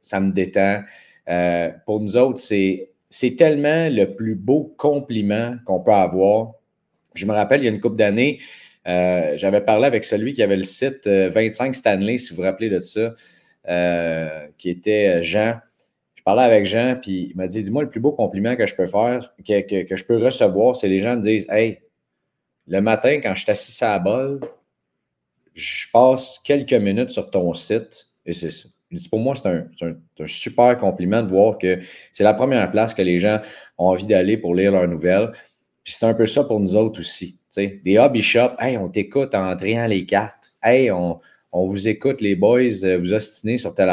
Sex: male